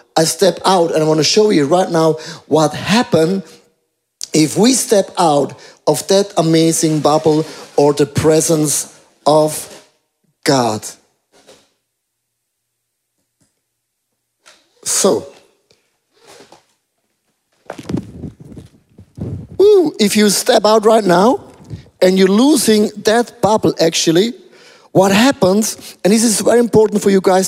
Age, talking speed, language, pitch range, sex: 50-69, 105 wpm, English, 160-215 Hz, male